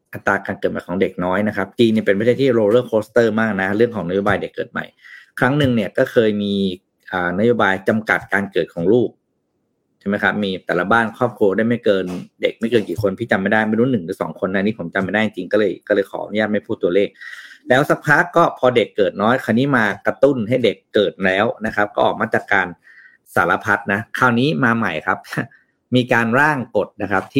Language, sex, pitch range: Thai, male, 100-125 Hz